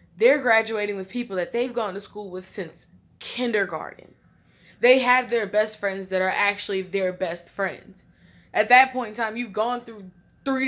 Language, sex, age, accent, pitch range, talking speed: English, female, 20-39, American, 185-235 Hz, 180 wpm